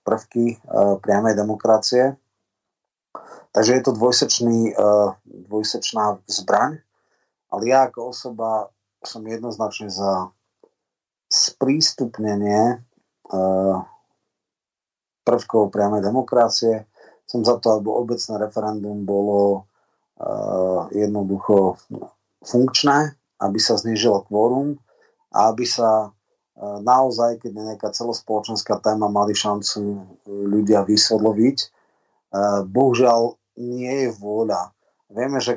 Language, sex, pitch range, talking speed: Slovak, male, 105-120 Hz, 95 wpm